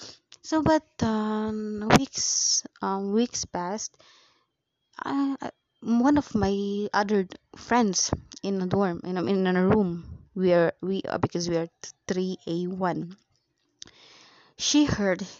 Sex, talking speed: female, 135 wpm